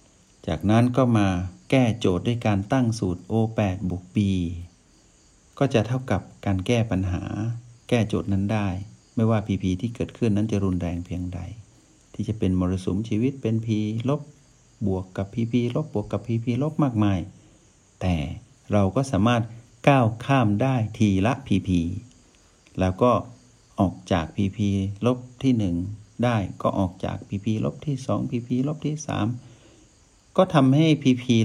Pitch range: 95-125 Hz